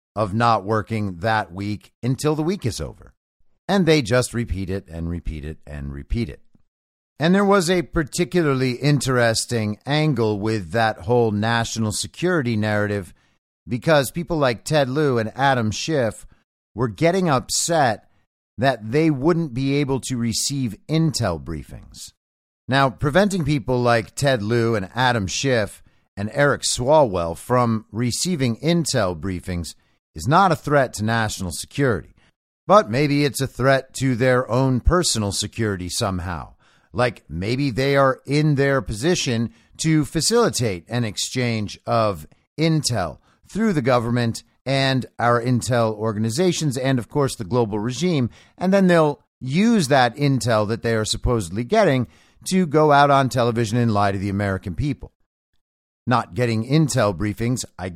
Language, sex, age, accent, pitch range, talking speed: English, male, 50-69, American, 105-140 Hz, 145 wpm